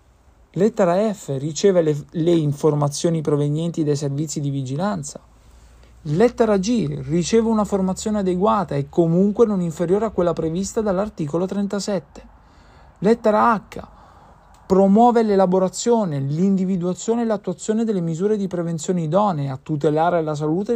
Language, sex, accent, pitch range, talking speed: Italian, male, native, 150-210 Hz, 120 wpm